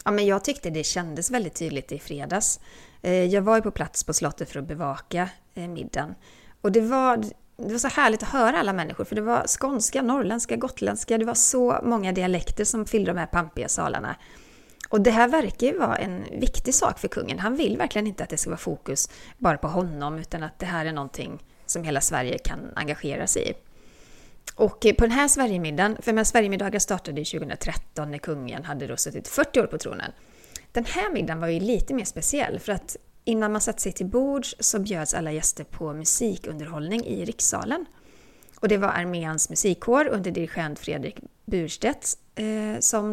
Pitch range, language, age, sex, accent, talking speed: 165-230 Hz, English, 30-49, female, Swedish, 195 wpm